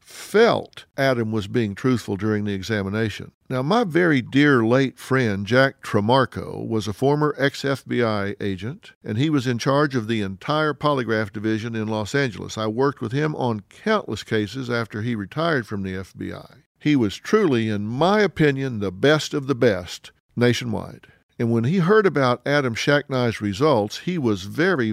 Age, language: 50-69, English